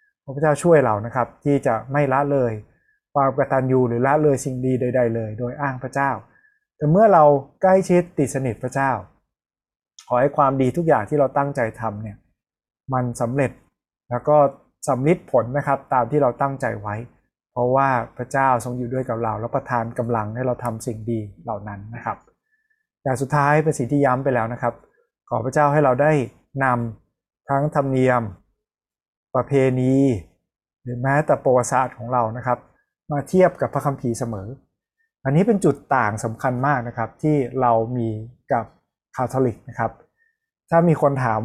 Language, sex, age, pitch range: Thai, male, 20-39, 120-145 Hz